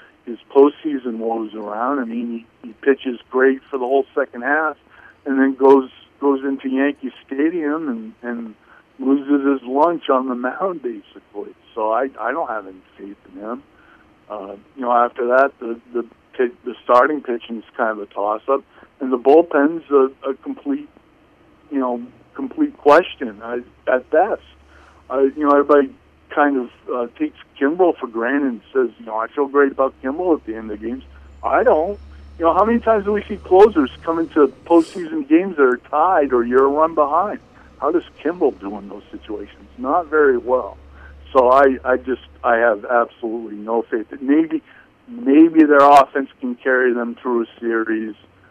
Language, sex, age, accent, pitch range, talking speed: English, male, 50-69, American, 115-160 Hz, 180 wpm